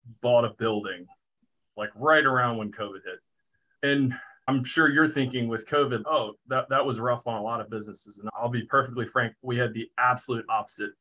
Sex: male